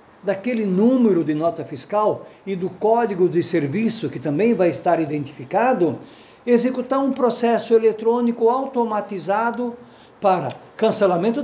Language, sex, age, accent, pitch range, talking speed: Portuguese, male, 60-79, Brazilian, 180-235 Hz, 115 wpm